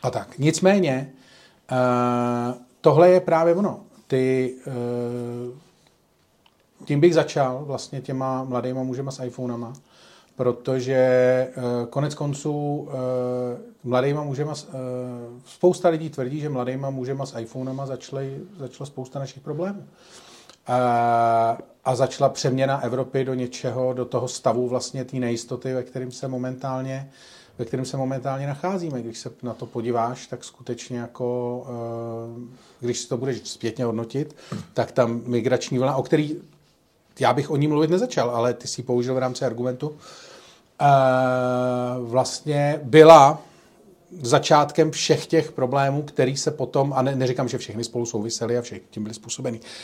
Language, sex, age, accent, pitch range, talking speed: Czech, male, 40-59, native, 125-140 Hz, 135 wpm